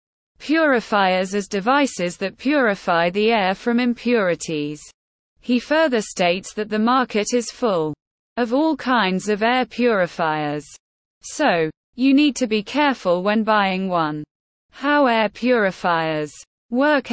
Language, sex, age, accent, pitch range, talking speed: English, female, 20-39, British, 180-250 Hz, 125 wpm